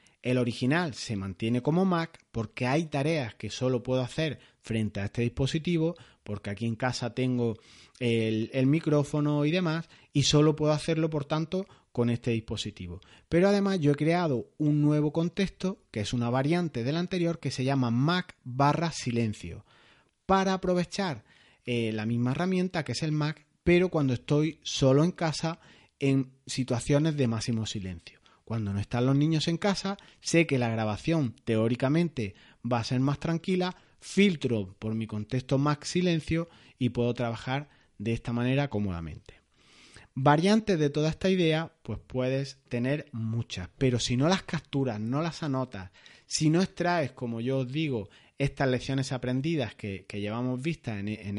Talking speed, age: 165 wpm, 30-49